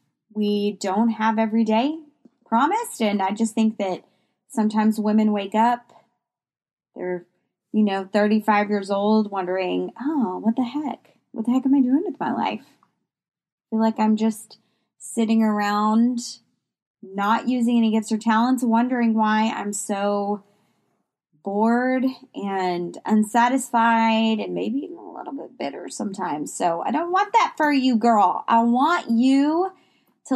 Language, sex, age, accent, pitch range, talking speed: English, female, 20-39, American, 205-250 Hz, 150 wpm